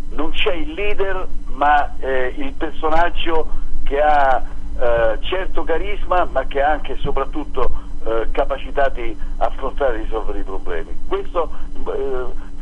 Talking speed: 140 wpm